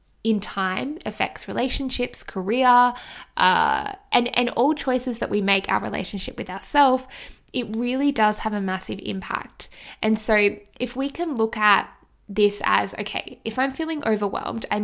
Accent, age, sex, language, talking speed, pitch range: Australian, 10-29, female, English, 160 wpm, 205-245 Hz